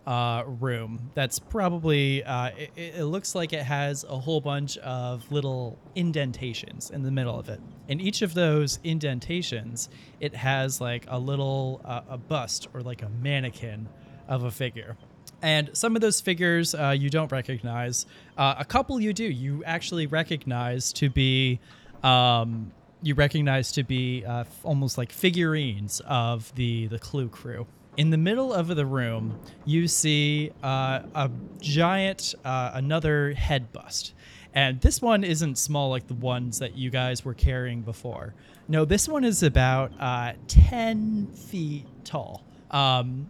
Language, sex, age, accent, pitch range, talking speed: English, male, 20-39, American, 125-155 Hz, 160 wpm